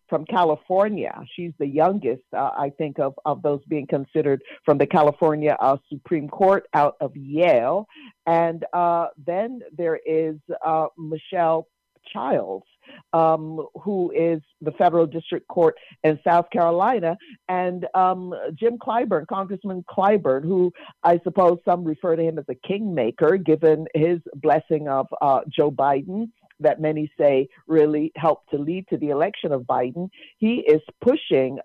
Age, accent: 50-69, American